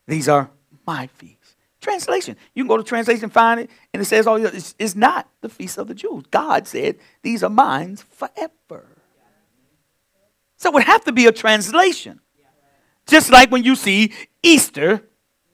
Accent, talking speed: American, 180 wpm